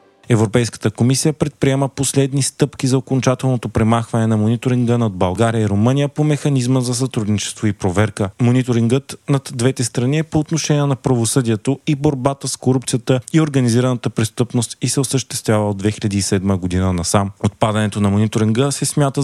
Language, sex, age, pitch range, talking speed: Bulgarian, male, 30-49, 110-135 Hz, 150 wpm